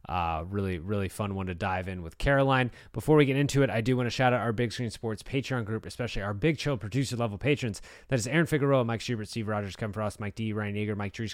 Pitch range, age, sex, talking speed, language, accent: 105-140 Hz, 30-49, male, 260 wpm, English, American